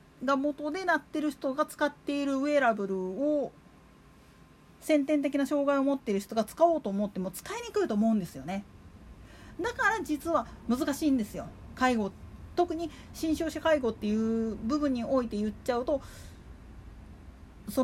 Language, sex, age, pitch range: Japanese, female, 40-59, 230-335 Hz